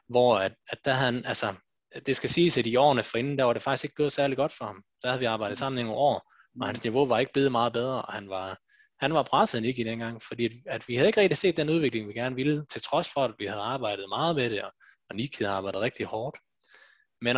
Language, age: Danish, 20-39